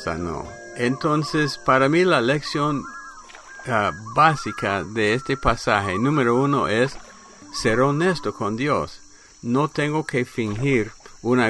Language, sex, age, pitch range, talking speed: English, male, 60-79, 105-130 Hz, 120 wpm